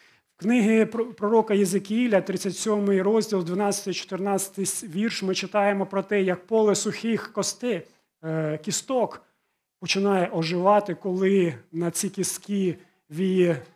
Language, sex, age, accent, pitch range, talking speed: Ukrainian, male, 40-59, native, 170-225 Hz, 100 wpm